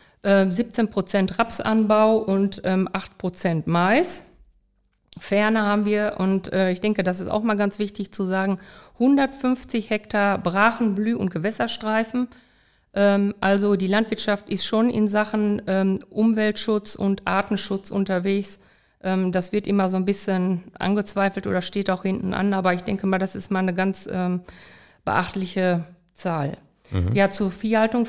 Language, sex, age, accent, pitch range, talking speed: German, female, 50-69, German, 180-210 Hz, 145 wpm